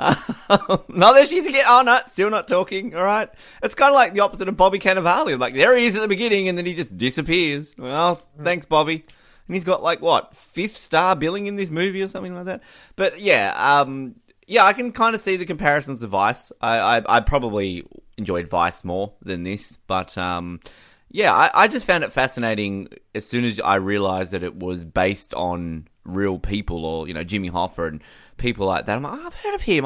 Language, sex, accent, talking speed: English, male, Australian, 220 wpm